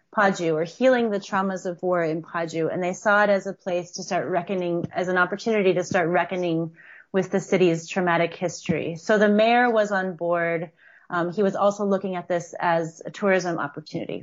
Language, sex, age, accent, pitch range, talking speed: English, female, 30-49, American, 170-200 Hz, 200 wpm